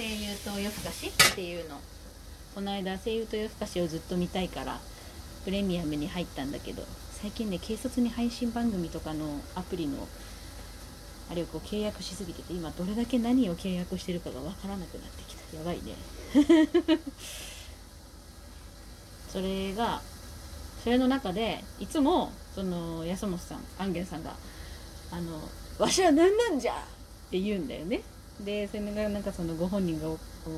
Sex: female